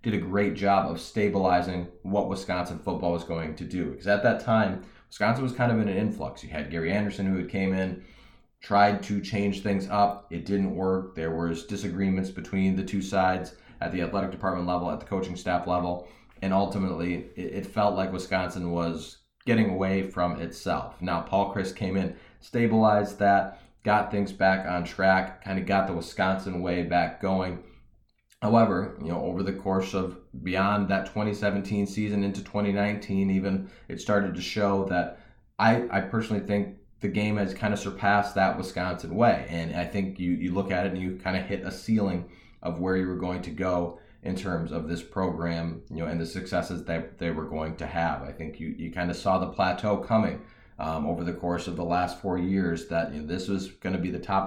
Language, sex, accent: English, male, American